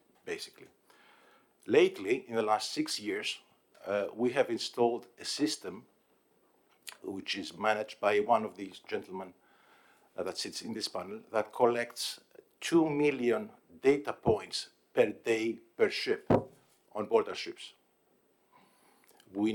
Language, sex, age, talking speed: English, male, 50-69, 125 wpm